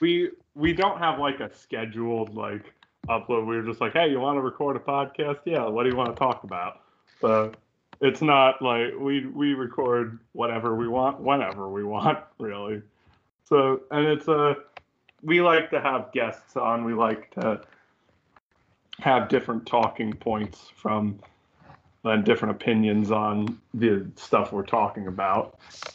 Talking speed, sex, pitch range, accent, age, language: 155 wpm, male, 105-125 Hz, American, 20-39, English